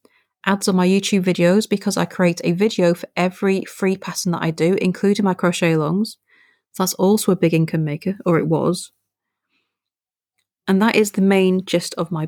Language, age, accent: English, 30-49, British